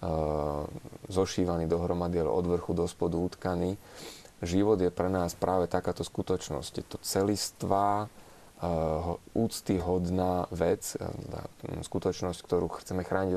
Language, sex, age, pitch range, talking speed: Slovak, male, 20-39, 85-95 Hz, 105 wpm